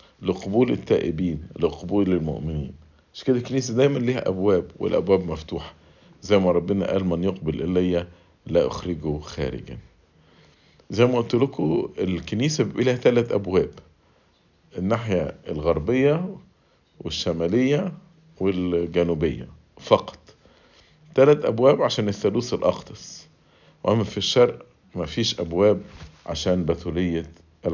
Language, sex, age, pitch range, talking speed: English, male, 50-69, 85-120 Hz, 100 wpm